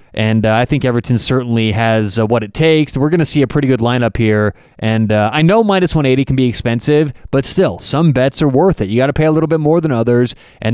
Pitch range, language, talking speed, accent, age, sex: 120-160 Hz, English, 265 wpm, American, 20-39, male